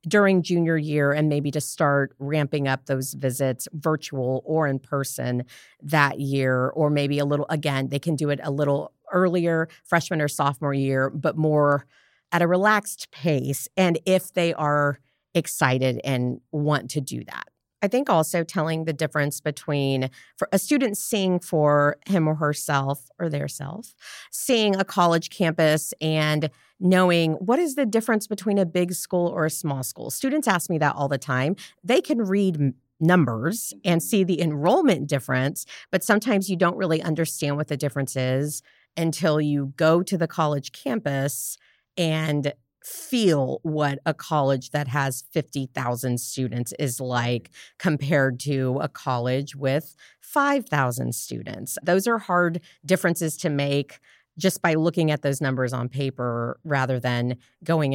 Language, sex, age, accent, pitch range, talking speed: English, female, 40-59, American, 140-175 Hz, 155 wpm